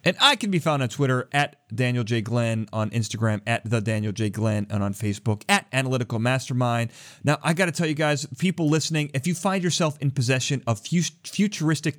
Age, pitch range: 30-49, 105-150 Hz